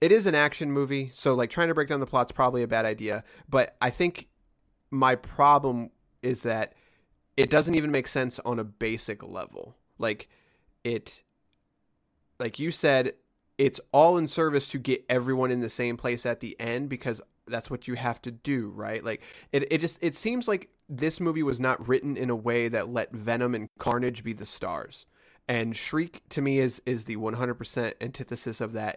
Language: English